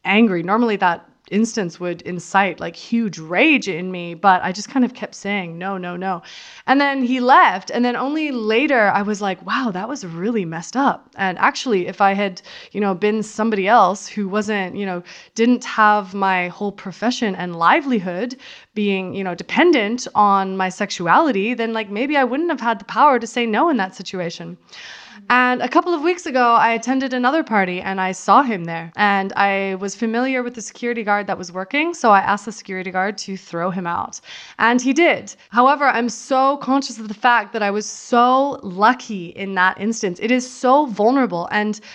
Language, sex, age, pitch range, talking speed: English, female, 20-39, 190-245 Hz, 200 wpm